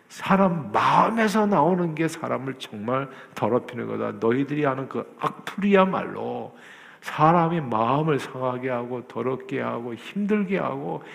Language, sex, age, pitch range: Korean, male, 50-69, 125-175 Hz